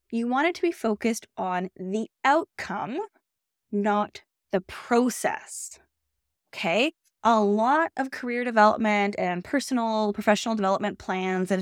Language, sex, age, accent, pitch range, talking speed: English, female, 10-29, American, 185-235 Hz, 125 wpm